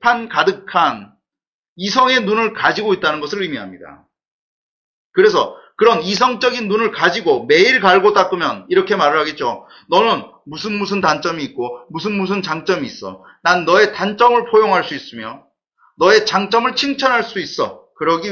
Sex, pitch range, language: male, 180-270 Hz, Korean